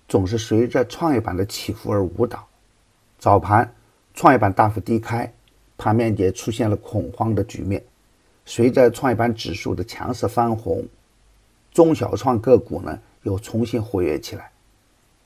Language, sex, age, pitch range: Chinese, male, 50-69, 100-120 Hz